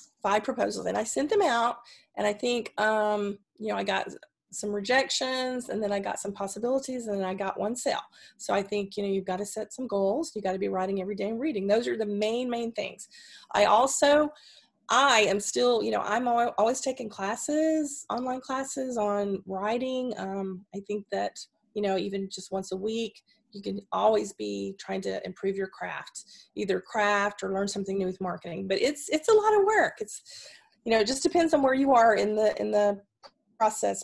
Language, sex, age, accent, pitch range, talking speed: English, female, 30-49, American, 195-230 Hz, 210 wpm